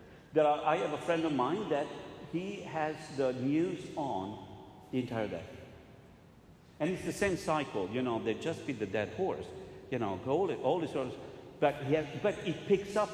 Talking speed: 175 wpm